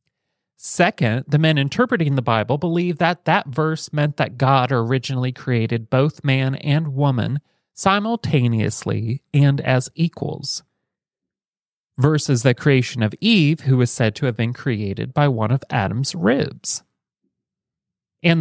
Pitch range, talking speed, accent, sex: 130-160 Hz, 135 wpm, American, male